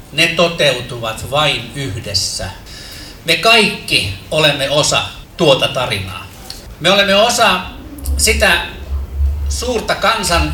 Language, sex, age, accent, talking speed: Finnish, male, 60-79, native, 90 wpm